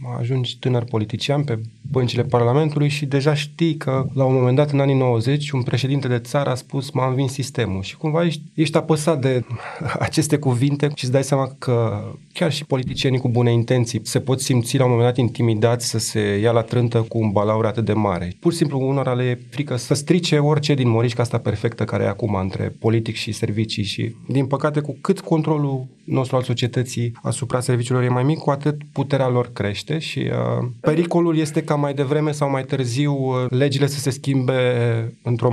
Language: Romanian